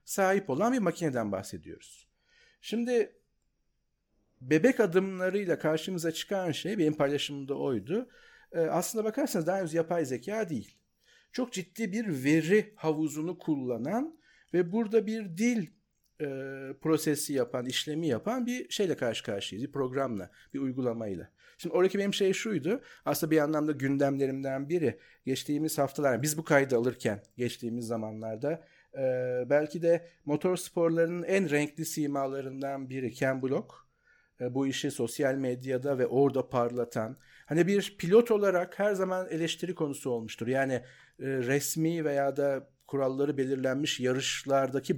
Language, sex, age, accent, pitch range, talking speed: Turkish, male, 50-69, native, 135-180 Hz, 130 wpm